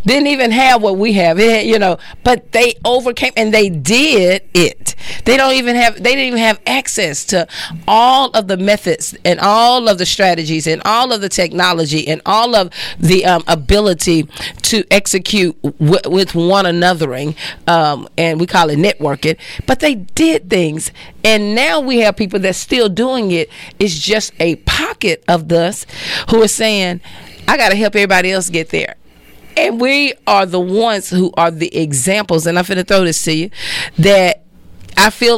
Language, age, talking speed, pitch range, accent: English, 40-59, 180 wpm, 170-225 Hz, American